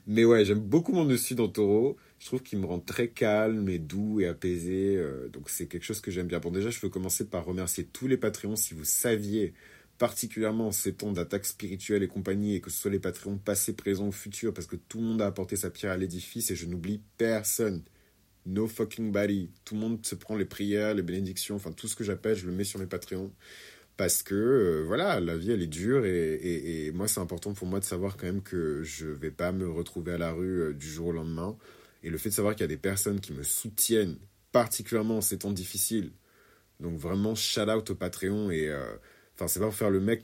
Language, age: French, 30-49